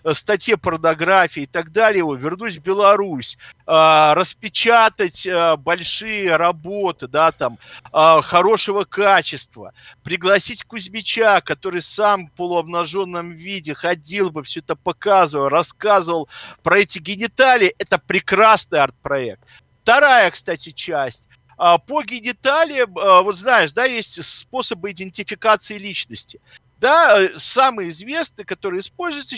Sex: male